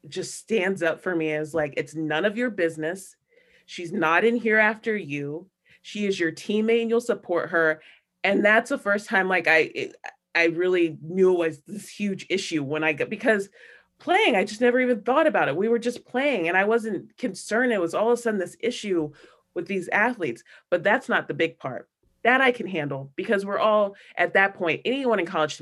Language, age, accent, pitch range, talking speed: English, 30-49, American, 150-200 Hz, 215 wpm